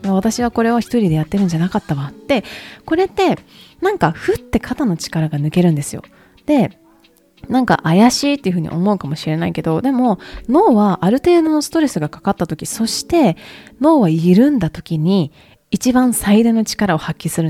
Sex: female